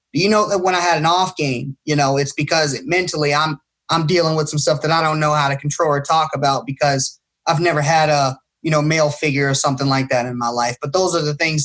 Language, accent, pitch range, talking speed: English, American, 150-205 Hz, 265 wpm